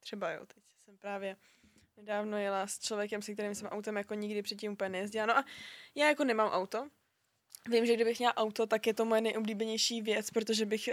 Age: 20-39